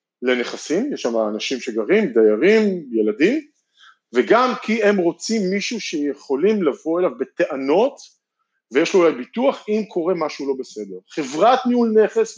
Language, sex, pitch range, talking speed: Hebrew, male, 155-220 Hz, 135 wpm